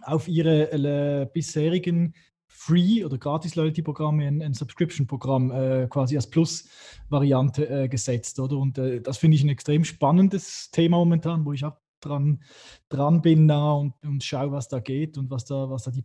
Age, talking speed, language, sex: 20-39, 170 wpm, German, male